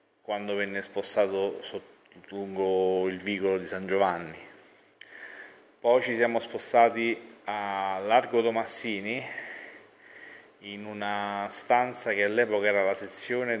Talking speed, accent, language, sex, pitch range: 110 wpm, native, Italian, male, 95-110 Hz